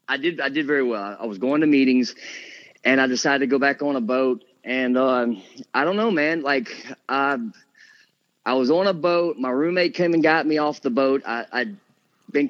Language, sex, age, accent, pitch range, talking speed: English, male, 30-49, American, 125-155 Hz, 215 wpm